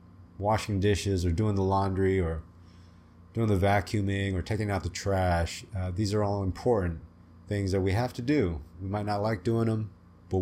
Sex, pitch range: male, 85-105 Hz